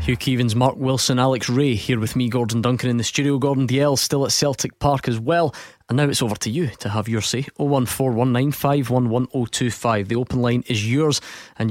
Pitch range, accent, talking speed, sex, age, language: 115-140 Hz, British, 200 wpm, male, 20-39, English